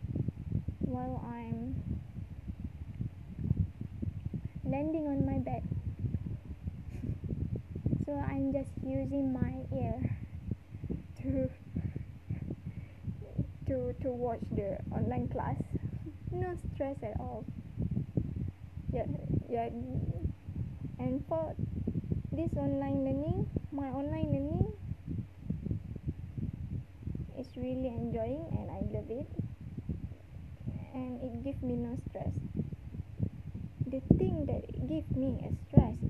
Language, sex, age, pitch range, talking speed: English, female, 20-39, 95-130 Hz, 90 wpm